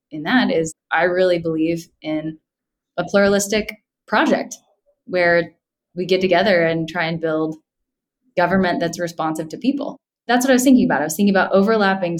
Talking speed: 165 wpm